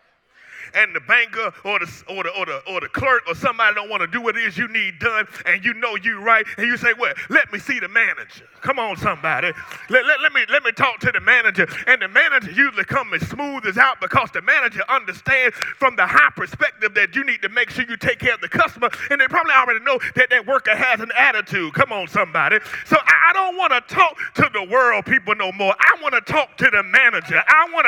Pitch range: 220-280 Hz